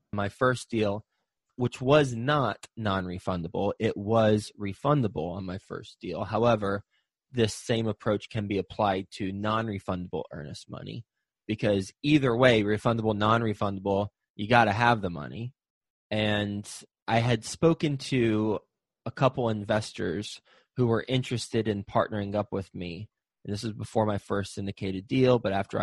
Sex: male